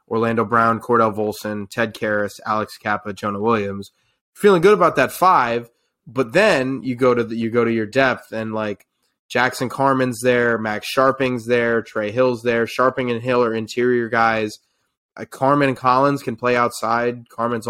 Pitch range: 115-130 Hz